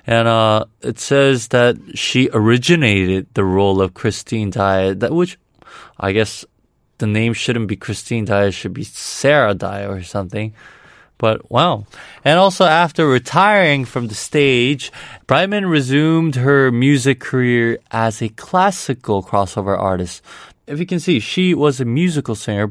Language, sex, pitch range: Korean, male, 105-140 Hz